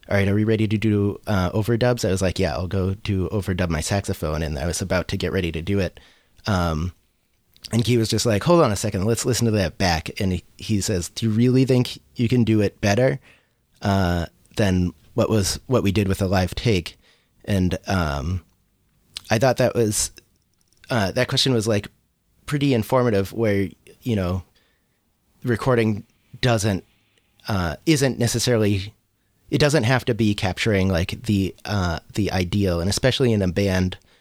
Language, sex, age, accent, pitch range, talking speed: English, male, 30-49, American, 90-110 Hz, 185 wpm